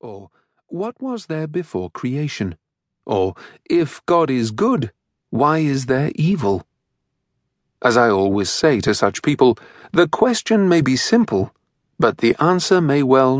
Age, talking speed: 40-59, 145 wpm